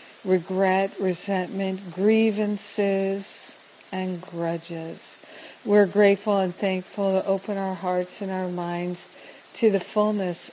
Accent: American